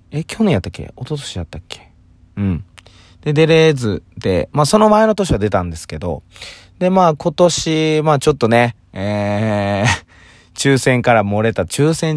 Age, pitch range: 20-39, 100-140 Hz